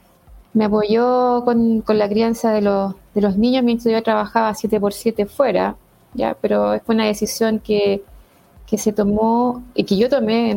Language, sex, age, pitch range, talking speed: Spanish, female, 20-39, 195-230 Hz, 180 wpm